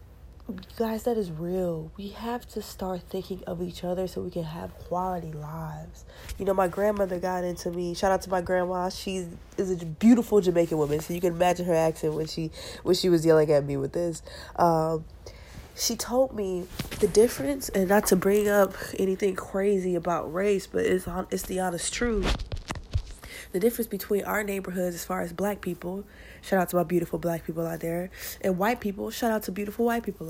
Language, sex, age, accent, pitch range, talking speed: English, female, 20-39, American, 175-215 Hz, 200 wpm